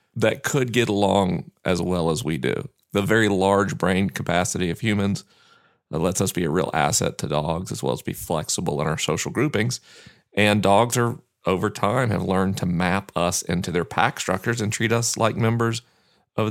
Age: 40-59